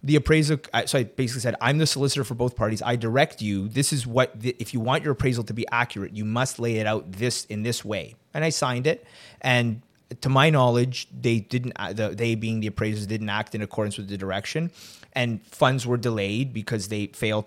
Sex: male